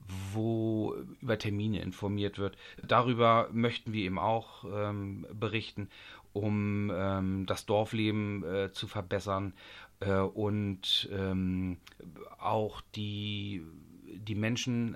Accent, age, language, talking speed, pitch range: German, 40-59, German, 105 wpm, 100-115 Hz